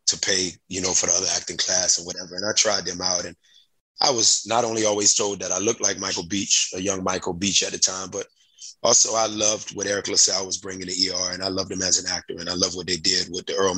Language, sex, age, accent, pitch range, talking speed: English, male, 30-49, American, 95-115 Hz, 275 wpm